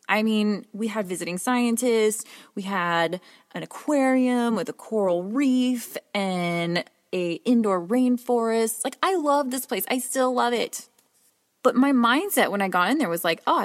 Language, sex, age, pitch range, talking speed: English, female, 20-39, 195-245 Hz, 165 wpm